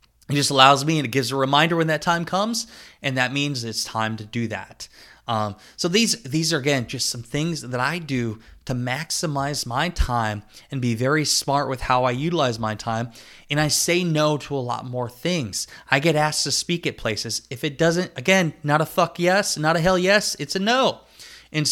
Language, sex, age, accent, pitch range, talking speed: English, male, 20-39, American, 130-160 Hz, 220 wpm